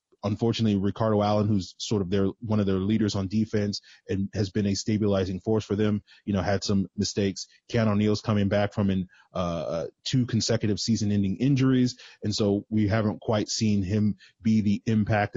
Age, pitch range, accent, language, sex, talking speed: 30-49, 95-110 Hz, American, English, male, 185 wpm